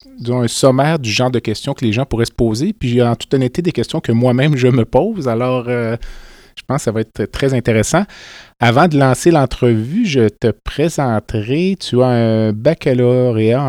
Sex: male